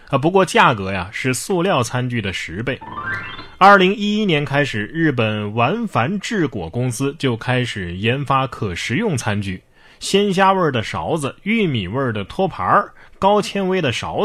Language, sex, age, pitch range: Chinese, male, 20-39, 110-160 Hz